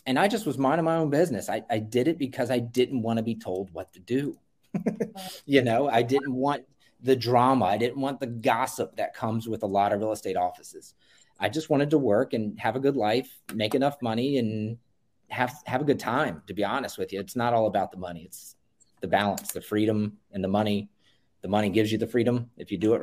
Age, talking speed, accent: 30-49, 235 wpm, American